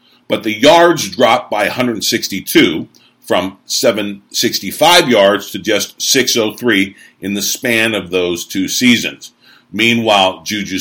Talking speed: 115 wpm